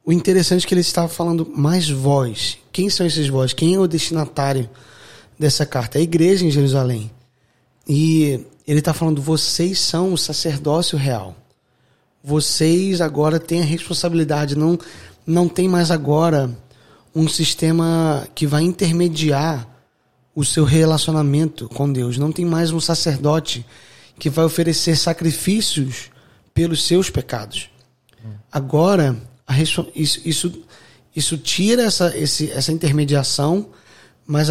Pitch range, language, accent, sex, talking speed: 135-165 Hz, Portuguese, Brazilian, male, 130 wpm